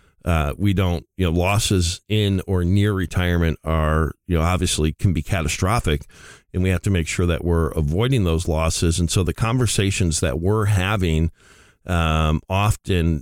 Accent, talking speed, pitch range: American, 170 wpm, 85-105 Hz